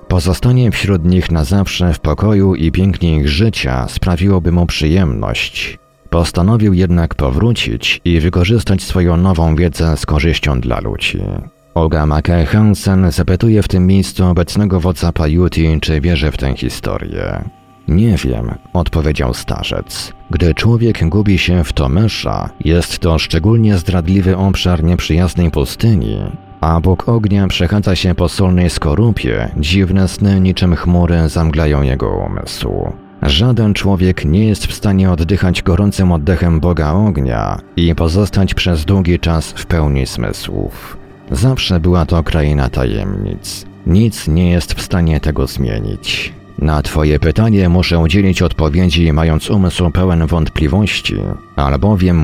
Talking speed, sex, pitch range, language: 130 wpm, male, 80-95 Hz, Polish